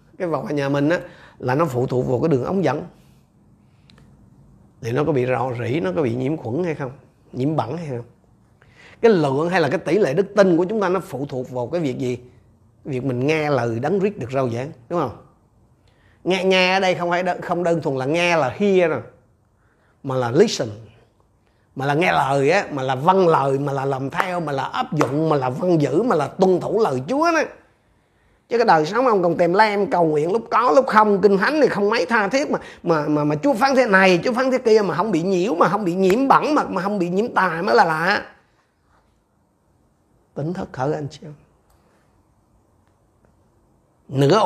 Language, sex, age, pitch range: Vietnamese, male, 30-49, 125-180 Hz